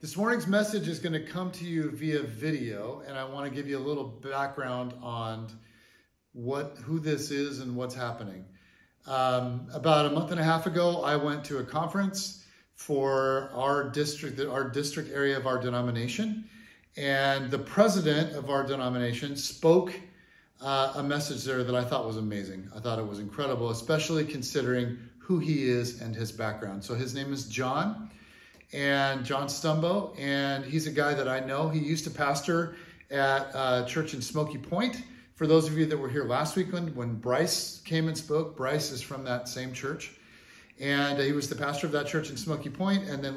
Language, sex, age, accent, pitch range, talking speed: English, male, 40-59, American, 125-160 Hz, 190 wpm